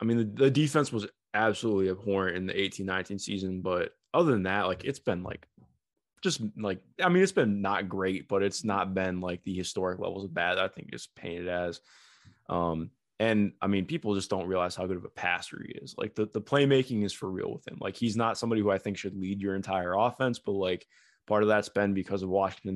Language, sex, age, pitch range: English, male, 20-39, 95-110 Hz